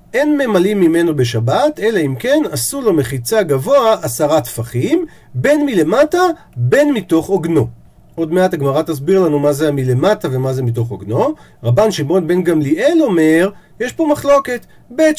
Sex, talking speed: male, 155 wpm